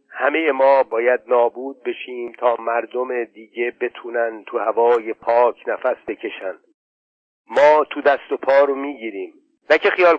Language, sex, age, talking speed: Persian, male, 50-69, 135 wpm